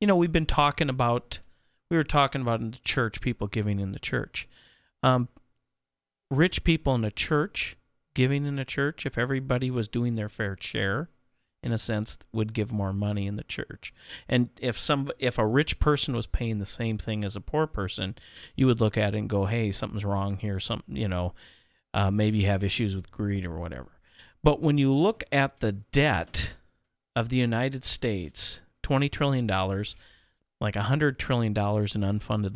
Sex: male